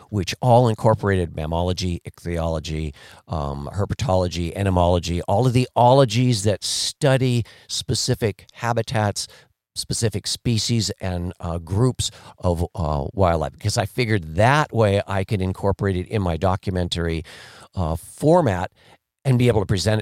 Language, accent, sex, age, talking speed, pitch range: English, American, male, 50-69, 130 wpm, 90-115 Hz